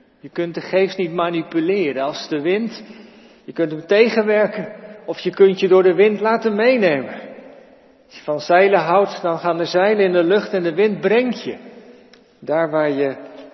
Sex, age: male, 50-69